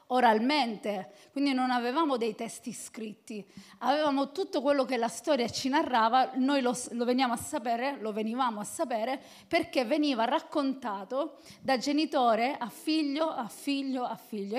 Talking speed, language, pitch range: 150 wpm, Italian, 220-290 Hz